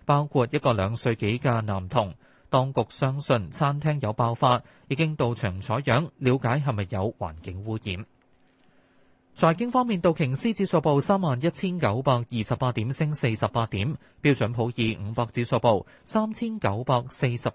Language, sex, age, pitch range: Chinese, male, 20-39, 110-155 Hz